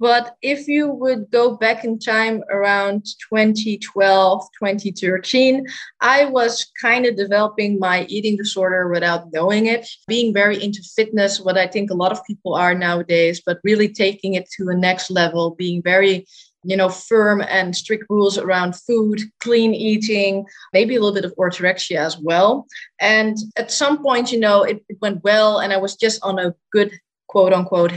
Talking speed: 175 wpm